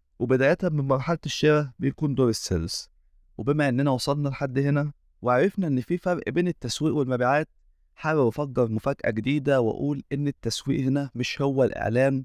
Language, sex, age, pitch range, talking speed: Arabic, male, 20-39, 110-145 Hz, 145 wpm